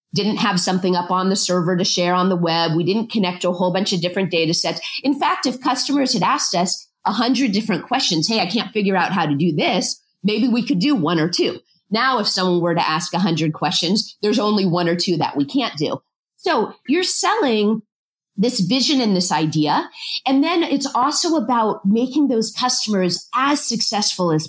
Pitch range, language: 180-255 Hz, English